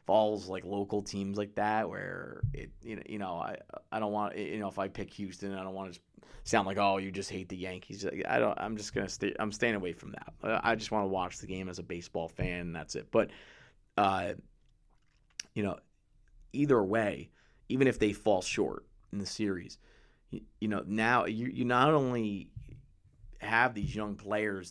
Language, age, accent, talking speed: English, 30-49, American, 200 wpm